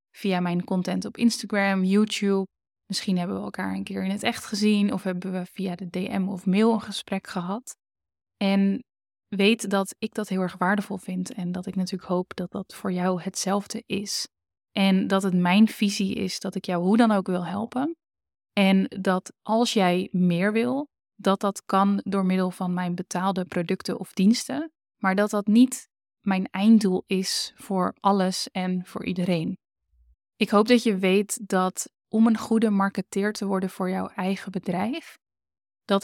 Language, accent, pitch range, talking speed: Dutch, Dutch, 185-205 Hz, 180 wpm